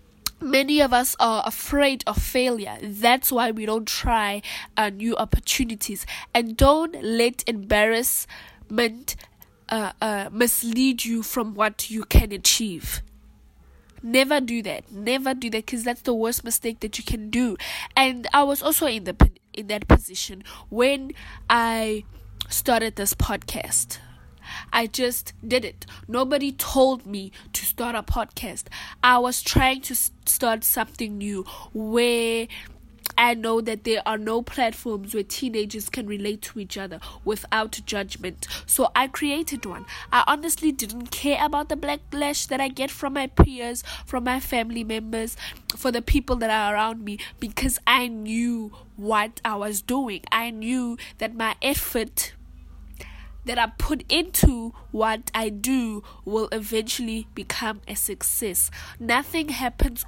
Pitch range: 210-255 Hz